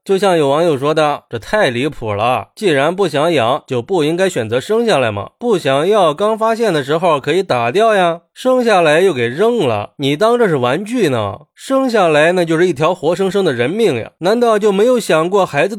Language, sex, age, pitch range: Chinese, male, 20-39, 145-205 Hz